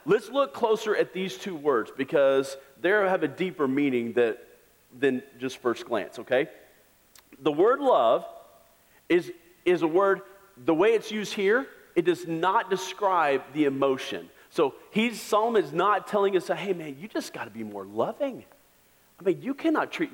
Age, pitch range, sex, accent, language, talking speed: 40-59, 140-225 Hz, male, American, English, 175 wpm